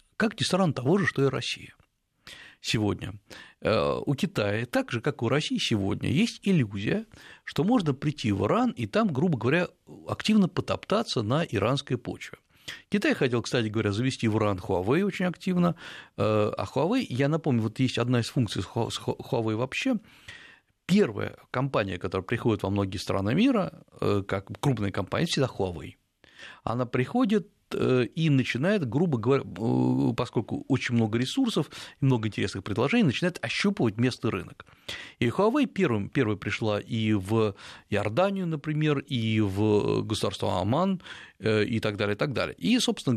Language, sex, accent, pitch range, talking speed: Russian, male, native, 105-170 Hz, 145 wpm